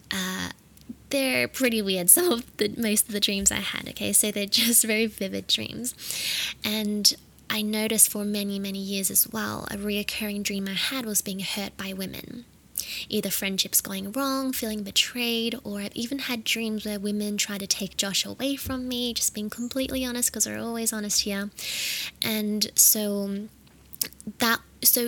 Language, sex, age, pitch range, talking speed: English, female, 10-29, 200-230 Hz, 170 wpm